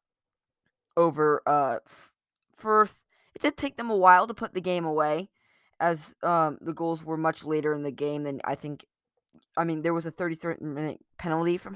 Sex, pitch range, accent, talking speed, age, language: female, 155-190 Hz, American, 190 wpm, 20-39, English